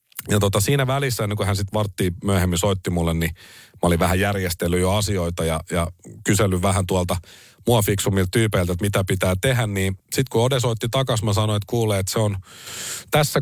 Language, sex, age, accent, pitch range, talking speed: Finnish, male, 40-59, native, 90-115 Hz, 190 wpm